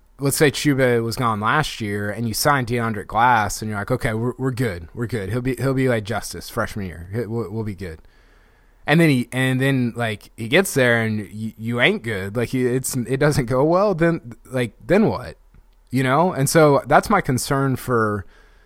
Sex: male